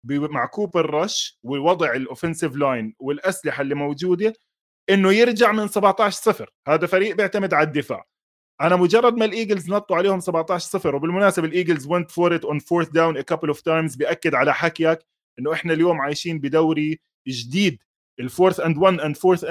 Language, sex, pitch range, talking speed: Arabic, male, 155-205 Hz, 155 wpm